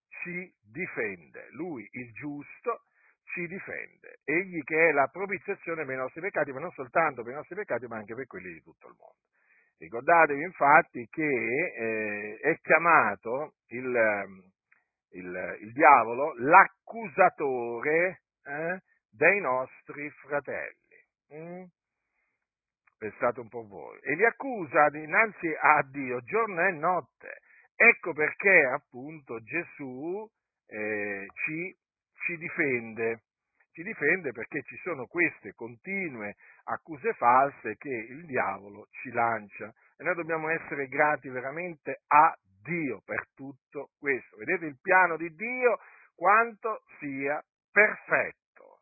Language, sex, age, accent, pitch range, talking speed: Italian, male, 50-69, native, 125-185 Hz, 120 wpm